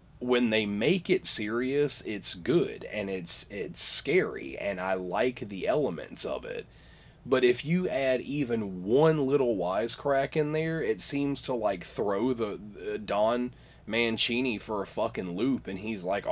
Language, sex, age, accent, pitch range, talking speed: English, male, 30-49, American, 100-130 Hz, 160 wpm